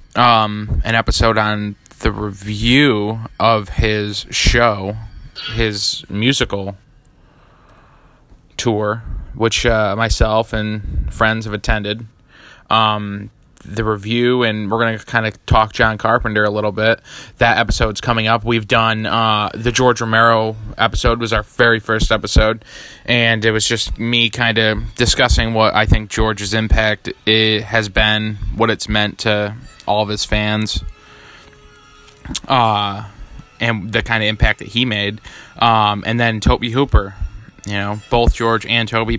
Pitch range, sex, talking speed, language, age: 105-115 Hz, male, 145 wpm, English, 20-39